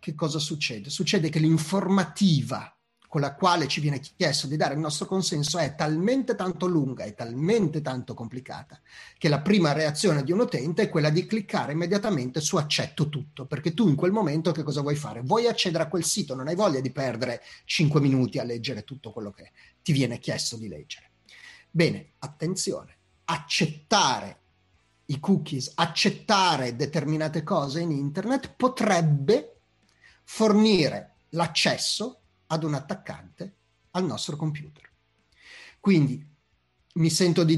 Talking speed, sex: 150 wpm, male